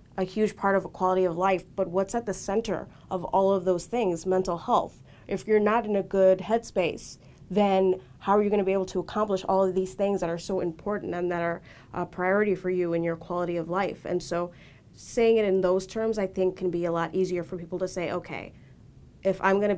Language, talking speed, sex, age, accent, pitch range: English, 235 wpm, female, 30-49, American, 175-200 Hz